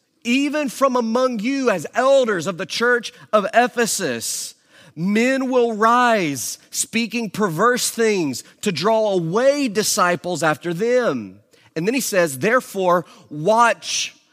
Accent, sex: American, male